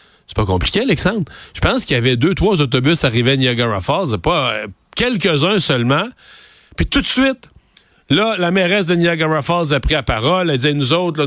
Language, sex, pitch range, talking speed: French, male, 145-185 Hz, 200 wpm